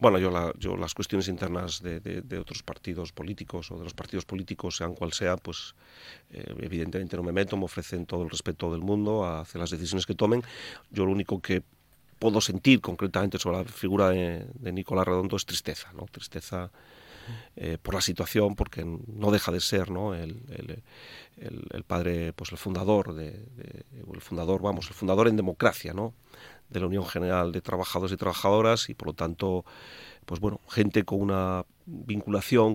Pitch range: 90-105 Hz